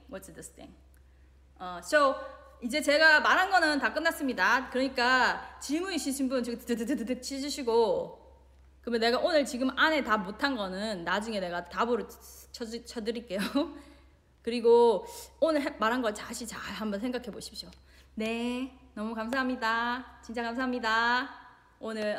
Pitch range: 220-290 Hz